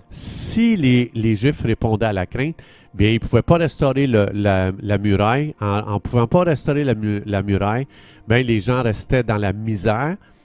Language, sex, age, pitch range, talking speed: French, male, 50-69, 100-130 Hz, 190 wpm